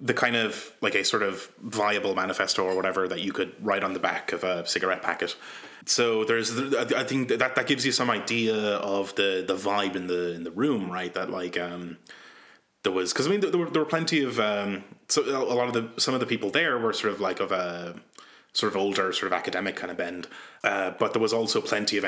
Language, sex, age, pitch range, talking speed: English, male, 20-39, 95-120 Hz, 245 wpm